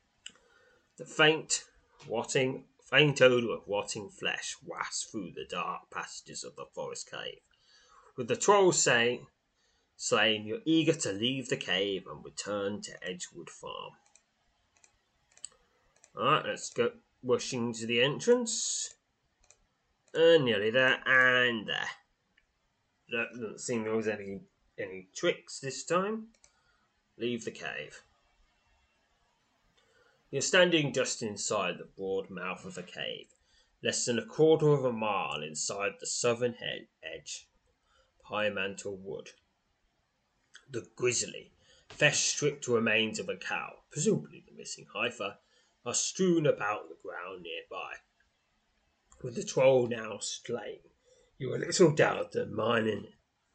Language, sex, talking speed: English, male, 120 wpm